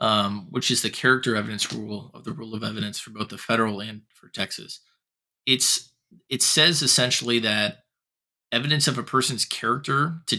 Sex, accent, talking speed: male, American, 175 wpm